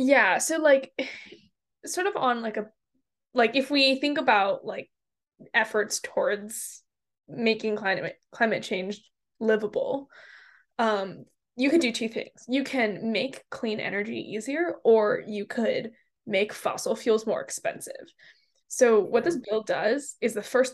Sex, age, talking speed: female, 10-29, 140 wpm